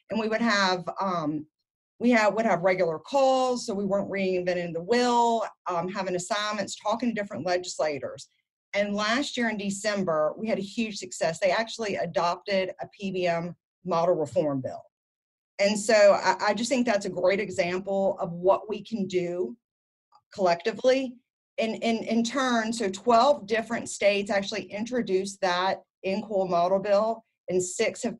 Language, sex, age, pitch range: English, female, 40-59, 180-225 Hz